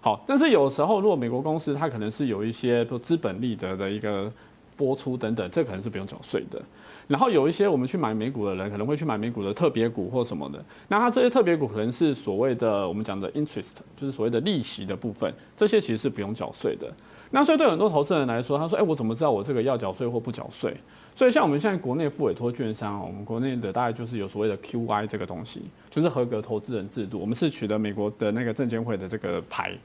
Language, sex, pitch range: Chinese, male, 105-140 Hz